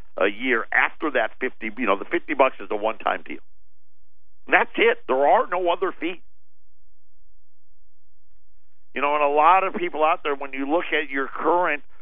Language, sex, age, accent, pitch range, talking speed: English, male, 50-69, American, 95-150 Hz, 185 wpm